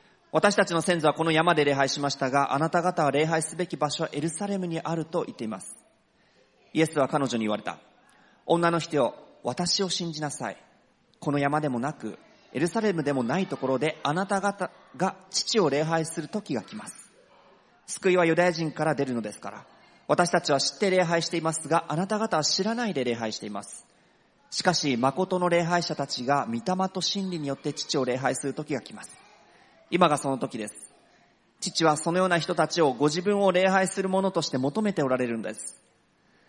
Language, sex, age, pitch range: English, male, 40-59, 135-175 Hz